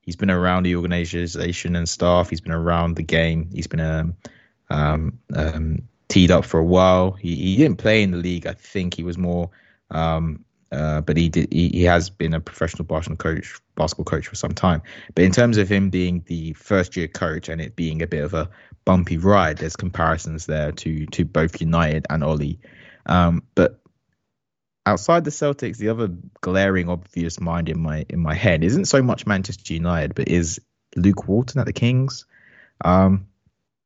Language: English